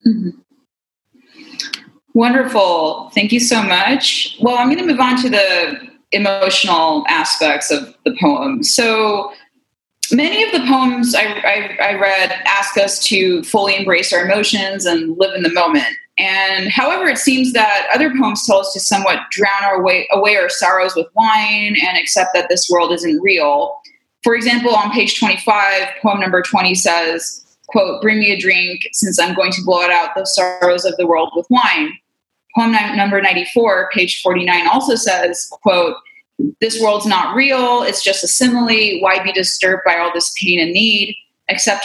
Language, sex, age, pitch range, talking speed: English, female, 20-39, 190-265 Hz, 170 wpm